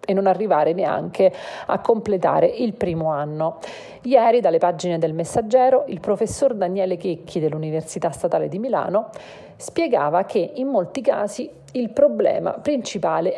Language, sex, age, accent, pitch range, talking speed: Italian, female, 40-59, native, 170-245 Hz, 130 wpm